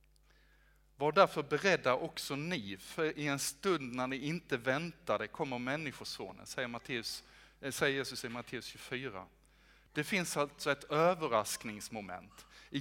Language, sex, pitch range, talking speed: Swedish, male, 115-155 Hz, 125 wpm